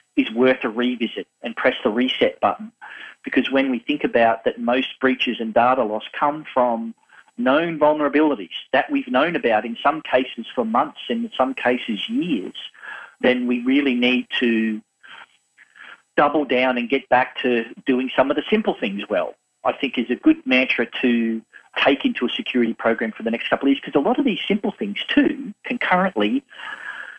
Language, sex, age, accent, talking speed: English, male, 40-59, Australian, 185 wpm